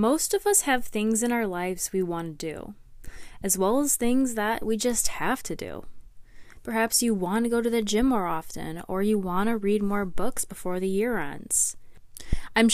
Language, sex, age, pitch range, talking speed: English, female, 20-39, 175-230 Hz, 205 wpm